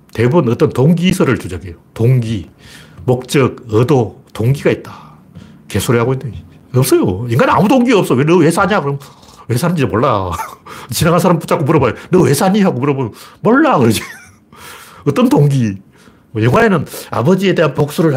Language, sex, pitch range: Korean, male, 110-175 Hz